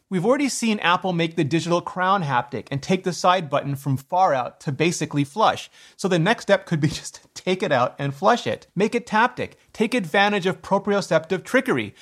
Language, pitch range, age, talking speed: English, 155-200 Hz, 30-49, 210 wpm